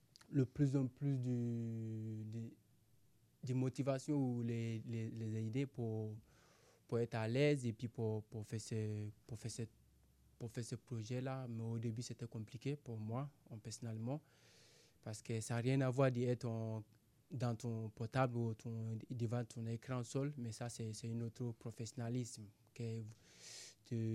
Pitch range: 110-125 Hz